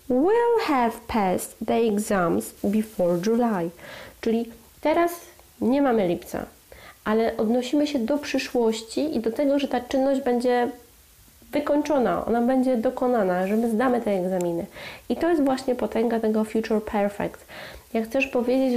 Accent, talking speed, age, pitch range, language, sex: native, 140 wpm, 30-49, 200-245 Hz, Polish, female